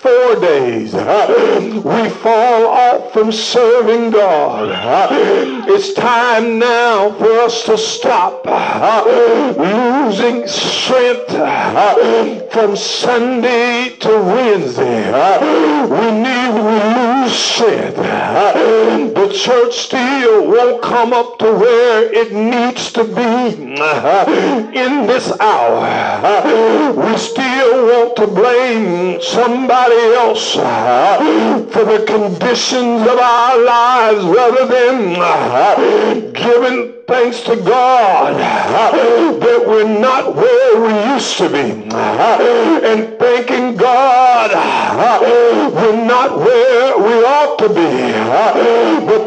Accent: American